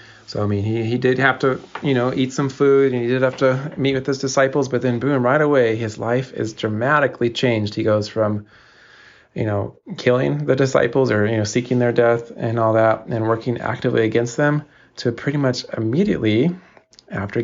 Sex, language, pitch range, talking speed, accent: male, English, 110-130 Hz, 205 wpm, American